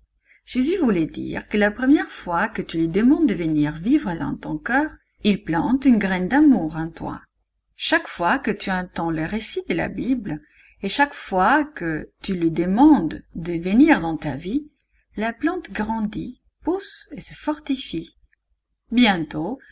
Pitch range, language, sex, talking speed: 175-275 Hz, English, female, 165 wpm